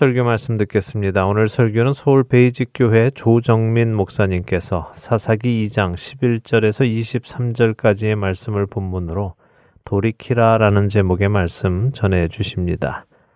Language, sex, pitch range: Korean, male, 100-120 Hz